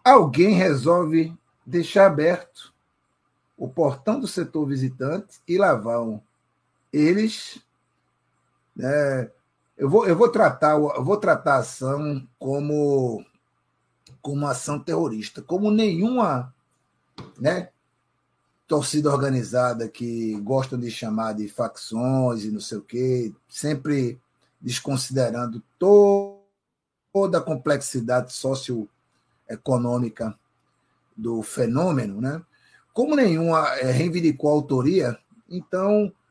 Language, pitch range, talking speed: Portuguese, 125-180 Hz, 95 wpm